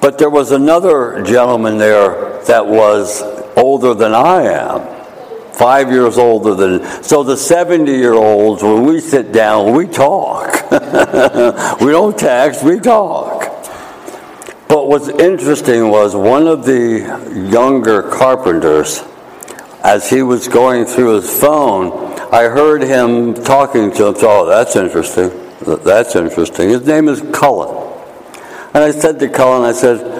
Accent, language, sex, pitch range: American, English, male, 115-140 Hz